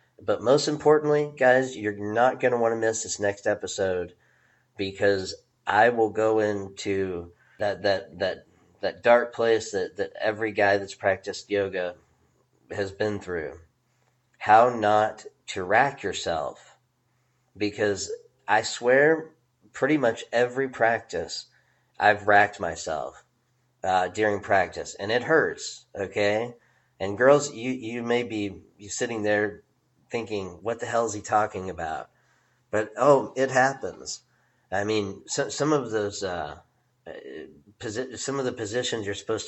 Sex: male